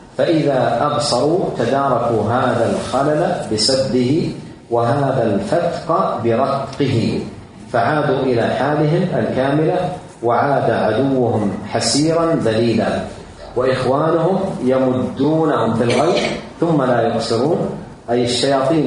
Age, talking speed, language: 40-59, 80 wpm, Arabic